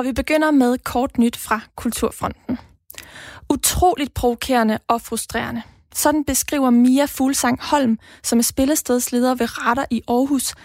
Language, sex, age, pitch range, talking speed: Danish, female, 20-39, 235-275 Hz, 135 wpm